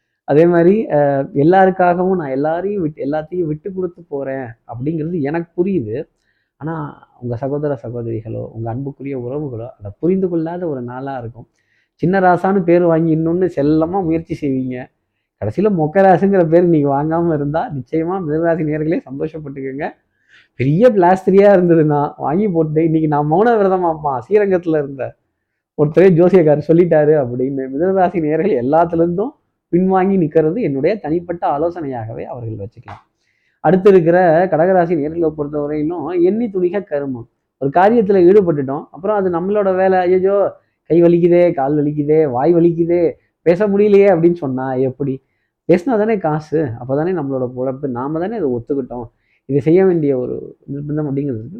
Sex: male